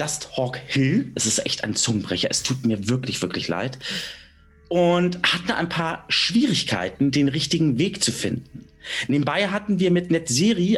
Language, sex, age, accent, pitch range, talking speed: German, male, 40-59, German, 115-180 Hz, 160 wpm